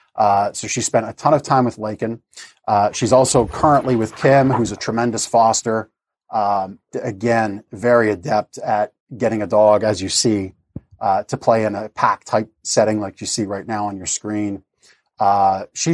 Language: English